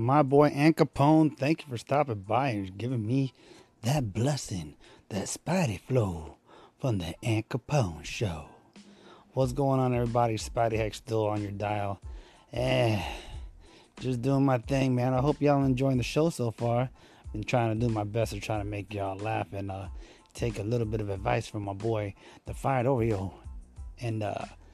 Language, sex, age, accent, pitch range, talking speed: English, male, 30-49, American, 105-140 Hz, 180 wpm